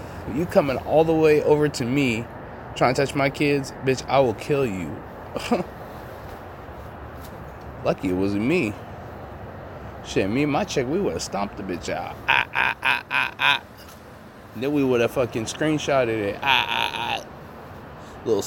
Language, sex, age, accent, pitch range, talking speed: English, male, 20-39, American, 100-135 Hz, 160 wpm